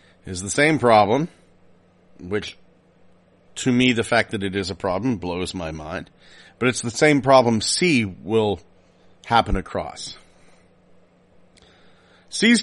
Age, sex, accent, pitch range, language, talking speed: 40-59, male, American, 95-135 Hz, English, 130 wpm